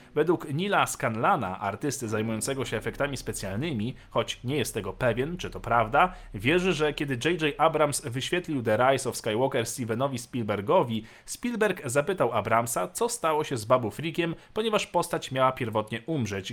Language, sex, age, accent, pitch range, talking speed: Polish, male, 40-59, native, 115-150 Hz, 155 wpm